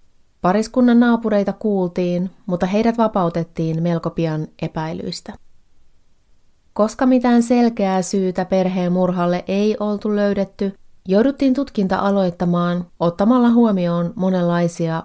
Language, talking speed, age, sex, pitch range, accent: Finnish, 95 wpm, 30-49, female, 170-210 Hz, native